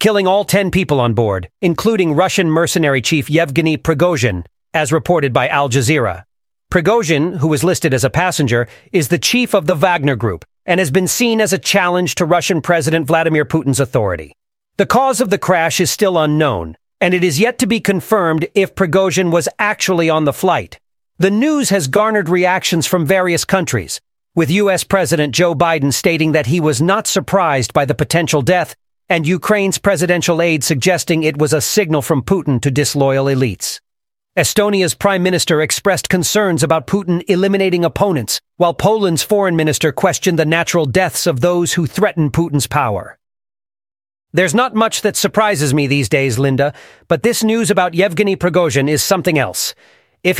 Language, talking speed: English, 175 wpm